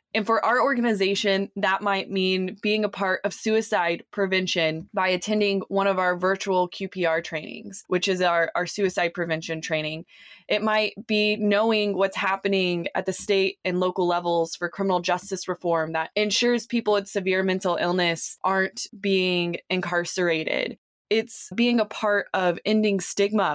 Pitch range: 175-205 Hz